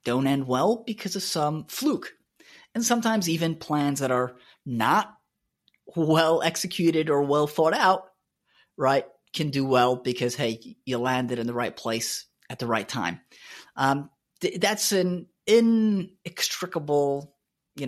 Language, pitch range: English, 130-180 Hz